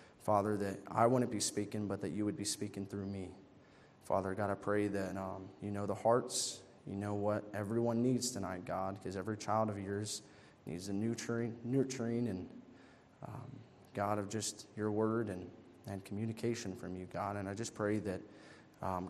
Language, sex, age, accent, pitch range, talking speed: English, male, 20-39, American, 100-125 Hz, 185 wpm